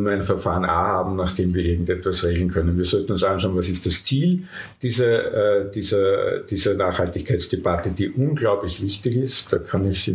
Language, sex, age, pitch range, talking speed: German, male, 50-69, 95-115 Hz, 170 wpm